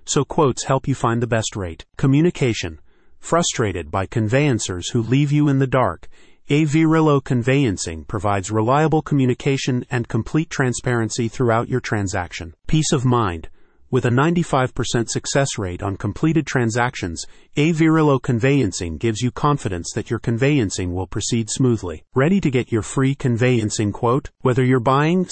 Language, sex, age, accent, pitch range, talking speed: English, male, 30-49, American, 110-140 Hz, 150 wpm